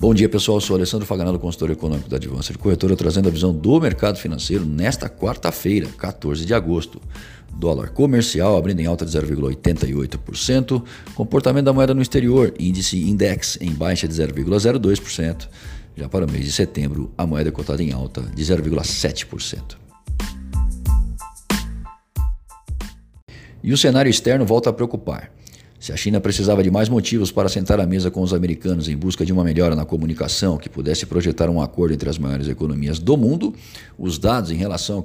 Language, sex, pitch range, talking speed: Portuguese, male, 80-105 Hz, 170 wpm